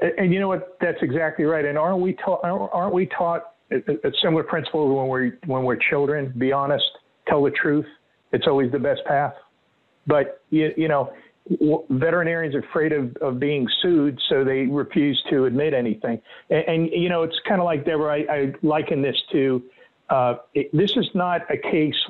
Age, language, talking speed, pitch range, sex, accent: 50-69, English, 195 wpm, 135-175 Hz, male, American